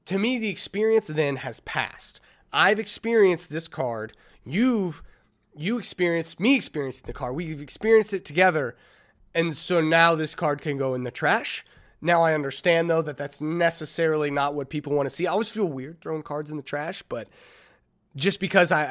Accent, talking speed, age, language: American, 185 wpm, 20-39, English